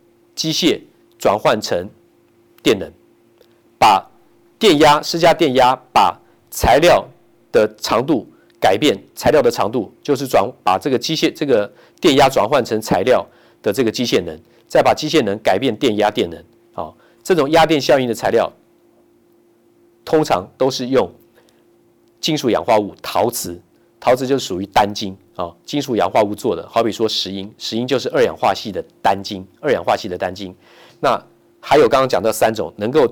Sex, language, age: male, Chinese, 50-69